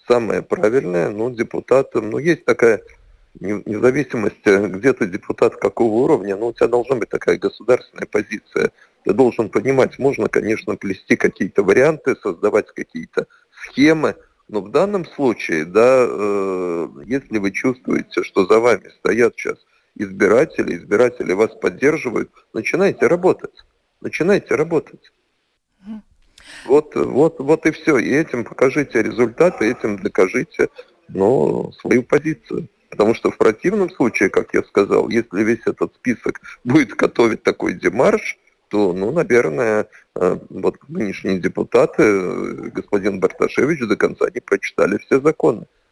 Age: 40-59